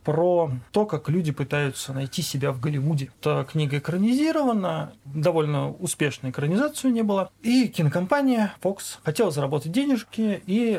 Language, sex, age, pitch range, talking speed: Russian, male, 30-49, 140-210 Hz, 135 wpm